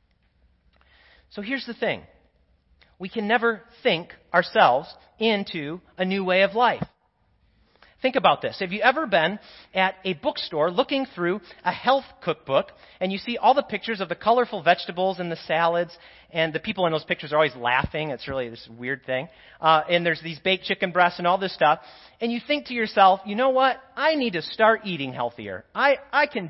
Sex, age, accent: male, 30-49, American